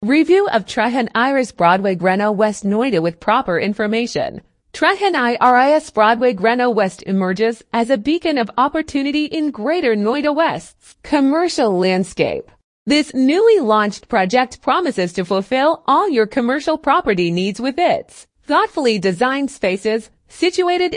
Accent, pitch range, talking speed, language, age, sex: American, 215-300 Hz, 125 wpm, English, 30-49, female